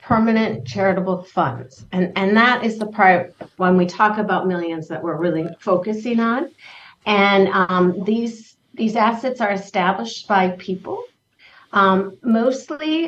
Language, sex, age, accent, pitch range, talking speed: English, female, 50-69, American, 180-225 Hz, 140 wpm